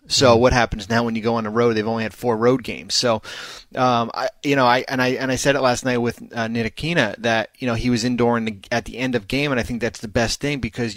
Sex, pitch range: male, 115-130 Hz